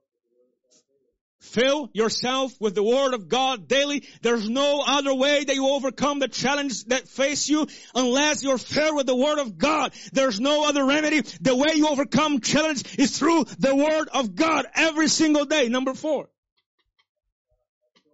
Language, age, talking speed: English, 30-49, 160 wpm